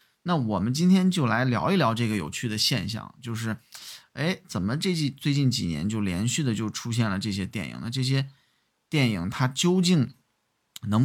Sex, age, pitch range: male, 20-39, 110-145 Hz